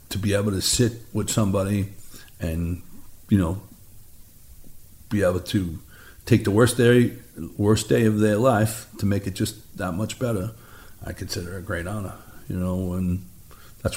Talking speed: 170 wpm